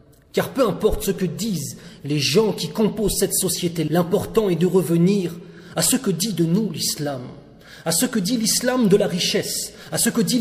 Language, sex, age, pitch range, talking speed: French, male, 30-49, 170-210 Hz, 200 wpm